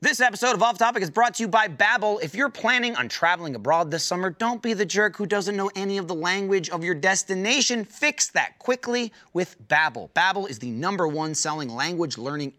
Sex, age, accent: male, 30-49, American